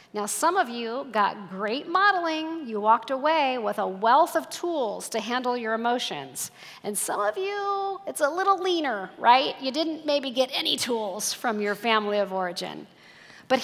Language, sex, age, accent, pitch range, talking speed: English, female, 40-59, American, 200-275 Hz, 175 wpm